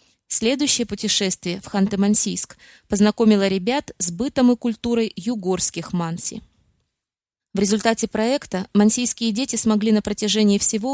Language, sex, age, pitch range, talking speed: Russian, female, 20-39, 190-230 Hz, 115 wpm